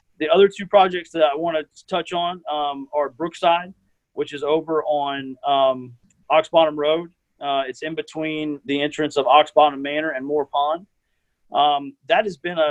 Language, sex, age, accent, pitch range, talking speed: English, male, 30-49, American, 140-165 Hz, 175 wpm